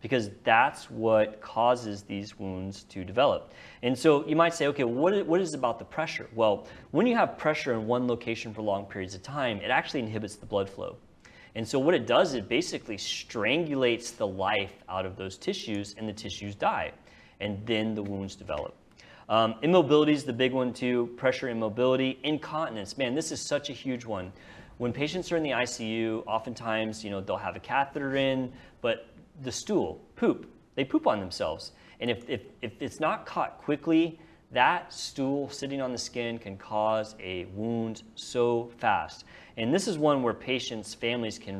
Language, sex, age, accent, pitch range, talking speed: English, male, 30-49, American, 105-135 Hz, 190 wpm